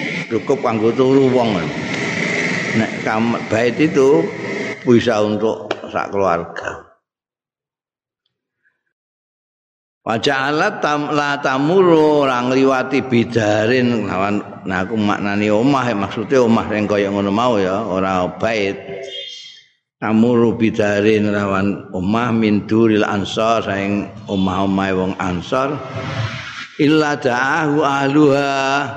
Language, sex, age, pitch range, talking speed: Indonesian, male, 50-69, 105-135 Hz, 45 wpm